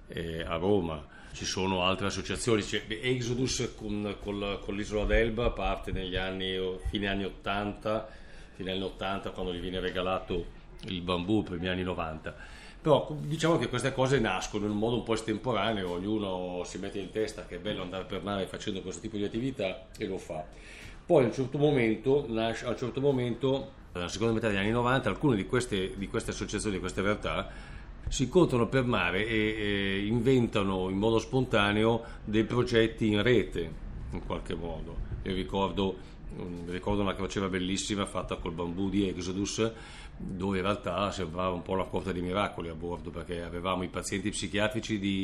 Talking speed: 165 wpm